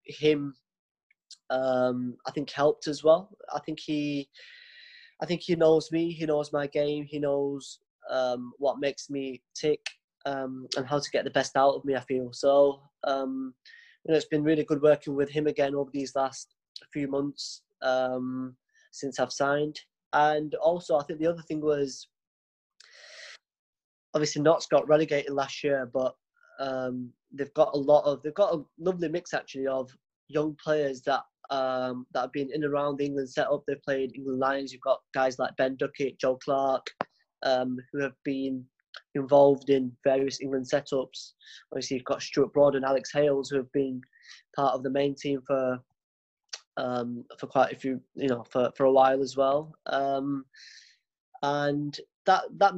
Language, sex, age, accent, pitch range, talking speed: English, male, 20-39, British, 135-150 Hz, 175 wpm